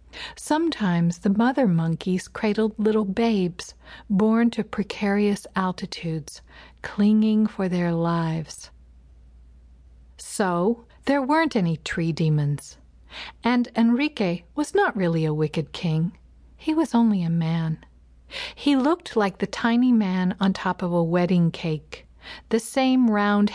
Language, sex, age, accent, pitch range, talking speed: English, female, 50-69, American, 165-230 Hz, 125 wpm